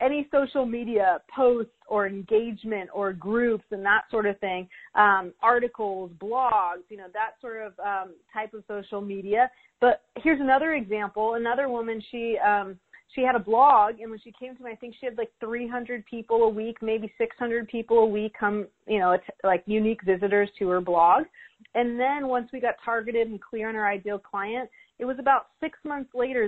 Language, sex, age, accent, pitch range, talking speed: English, female, 30-49, American, 205-255 Hz, 195 wpm